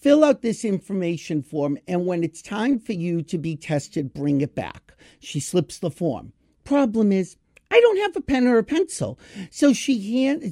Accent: American